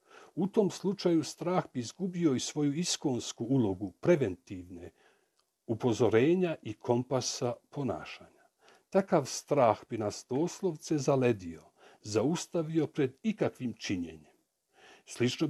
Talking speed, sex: 100 wpm, male